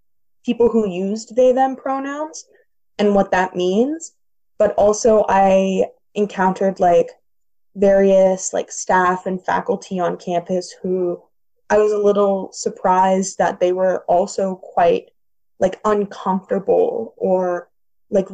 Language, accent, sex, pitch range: English, American, female, 185-235 Hz